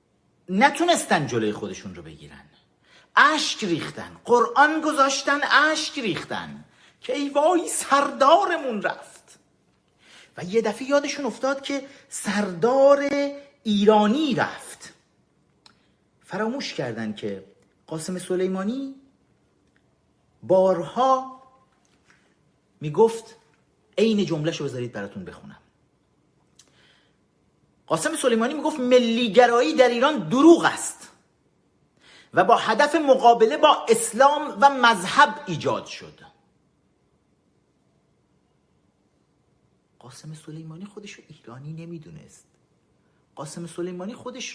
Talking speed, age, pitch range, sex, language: 85 wpm, 50-69, 175-275 Hz, male, Persian